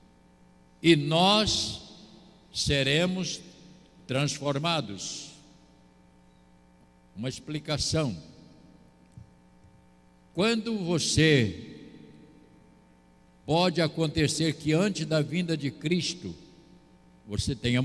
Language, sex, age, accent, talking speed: Portuguese, male, 60-79, Brazilian, 60 wpm